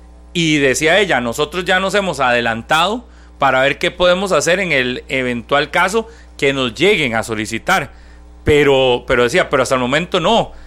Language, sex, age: Spanish, male, 40-59